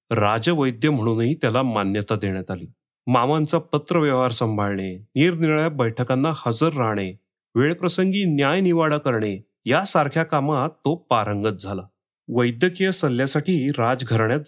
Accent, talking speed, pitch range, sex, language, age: native, 105 wpm, 115-160 Hz, male, Marathi, 30-49